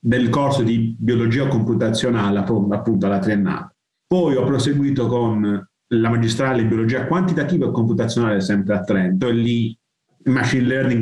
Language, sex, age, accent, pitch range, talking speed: Italian, male, 30-49, native, 110-135 Hz, 145 wpm